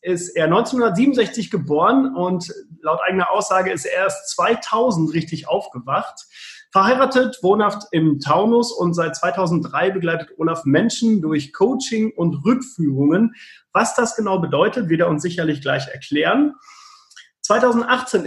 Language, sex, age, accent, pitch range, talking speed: German, male, 30-49, German, 165-235 Hz, 130 wpm